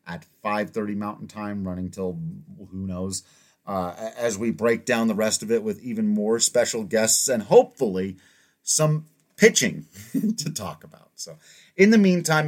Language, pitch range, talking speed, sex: English, 105-140 Hz, 160 wpm, male